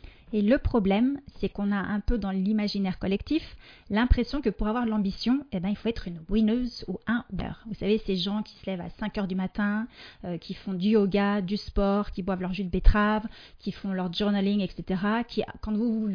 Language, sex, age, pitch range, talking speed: French, female, 30-49, 190-230 Hz, 240 wpm